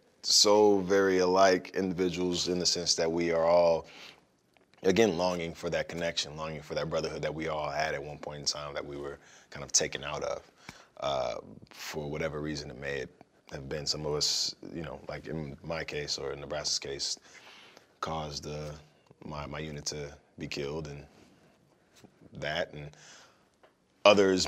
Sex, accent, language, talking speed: male, American, English, 170 wpm